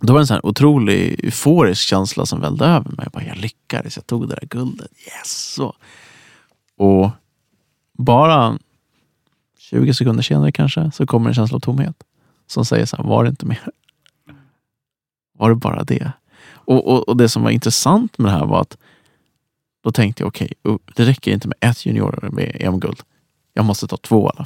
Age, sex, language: 30-49, male, Swedish